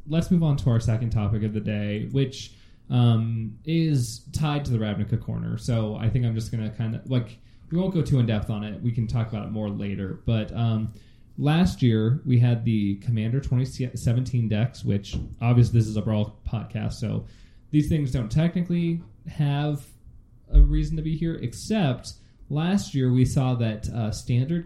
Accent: American